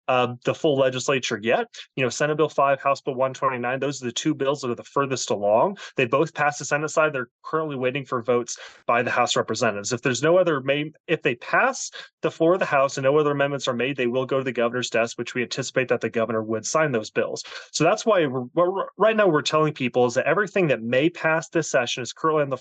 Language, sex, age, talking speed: English, male, 20-39, 255 wpm